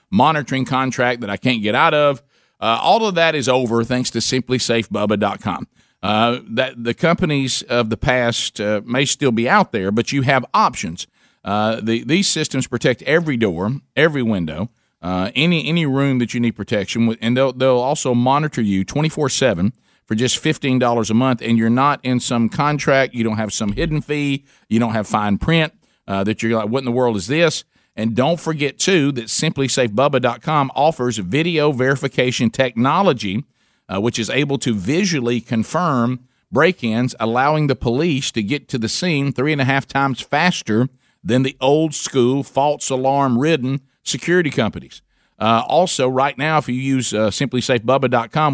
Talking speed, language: 170 wpm, English